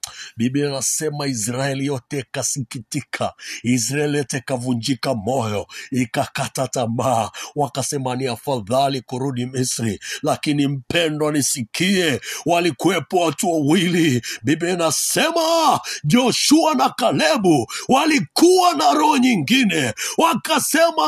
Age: 60-79